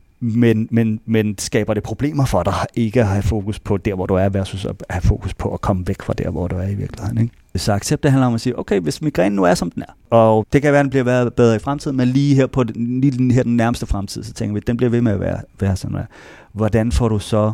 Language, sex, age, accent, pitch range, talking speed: Danish, male, 30-49, native, 100-125 Hz, 285 wpm